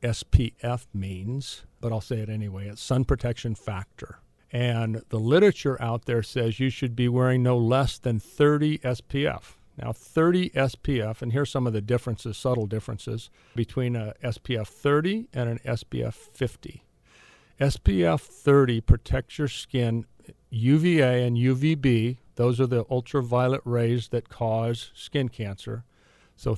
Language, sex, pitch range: English, male, 110-130 Hz